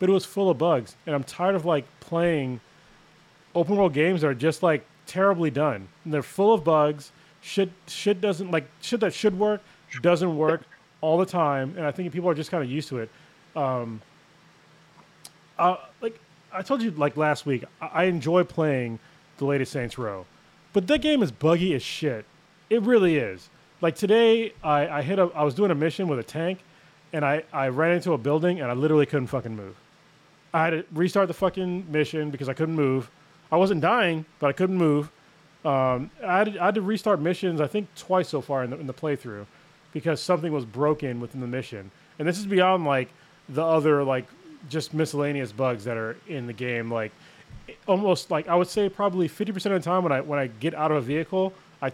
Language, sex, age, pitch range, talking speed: English, male, 20-39, 145-180 Hz, 215 wpm